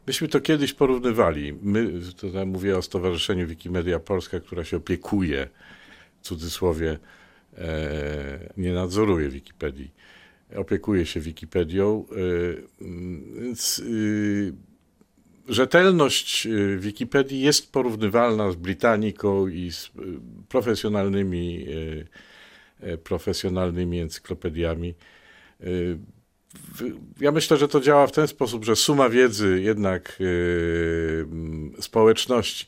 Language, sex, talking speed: Polish, male, 85 wpm